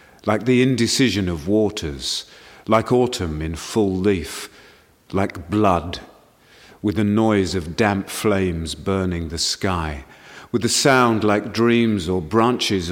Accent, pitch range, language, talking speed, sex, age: British, 95-115 Hz, English, 130 wpm, male, 40-59